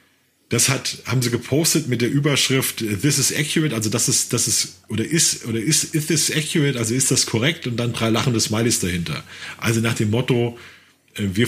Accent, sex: German, male